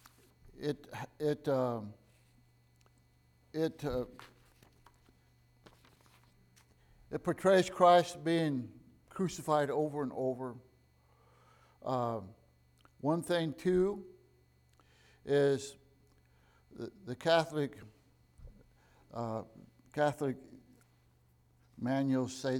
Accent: American